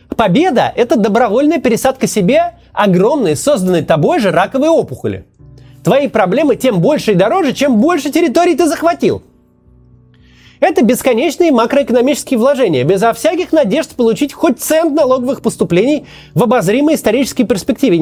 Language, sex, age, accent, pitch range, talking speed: Russian, male, 30-49, native, 200-300 Hz, 130 wpm